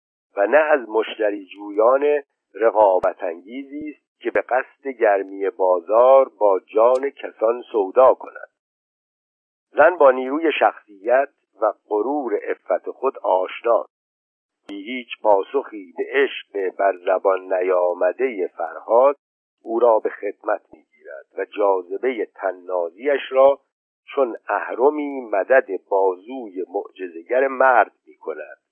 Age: 50-69